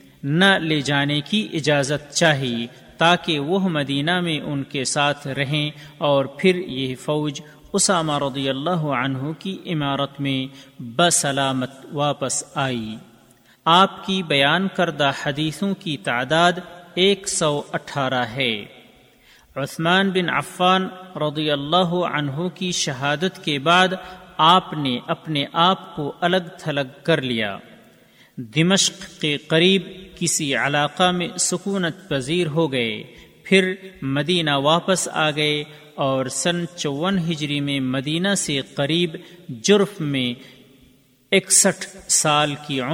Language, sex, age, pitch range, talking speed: Urdu, male, 40-59, 140-180 Hz, 120 wpm